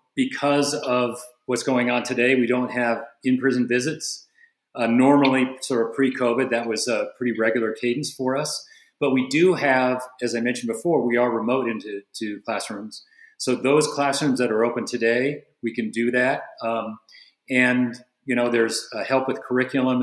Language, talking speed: English, 175 wpm